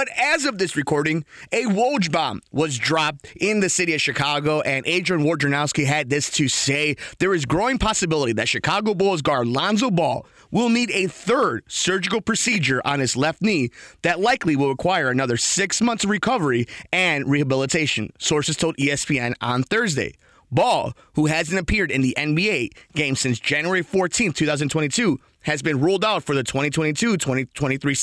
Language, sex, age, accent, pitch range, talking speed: English, male, 30-49, American, 135-180 Hz, 165 wpm